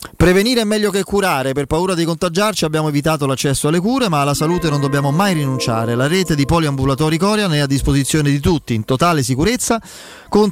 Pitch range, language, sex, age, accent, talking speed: 140-180 Hz, Italian, male, 30-49, native, 200 wpm